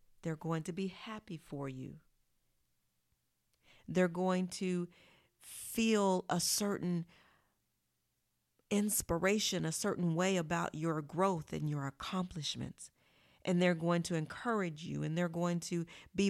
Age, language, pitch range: 40-59, English, 165-190 Hz